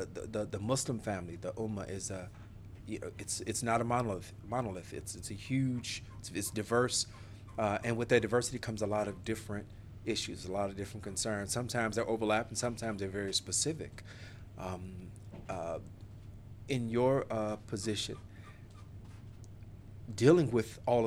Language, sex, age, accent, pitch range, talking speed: English, male, 40-59, American, 105-115 Hz, 155 wpm